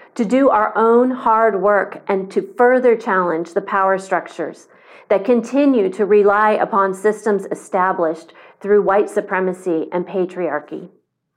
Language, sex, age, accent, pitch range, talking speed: English, female, 40-59, American, 180-220 Hz, 130 wpm